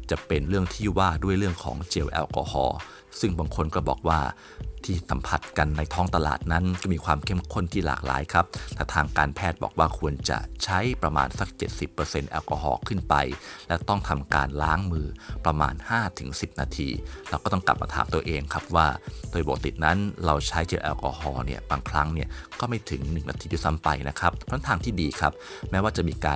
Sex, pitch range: male, 75-90 Hz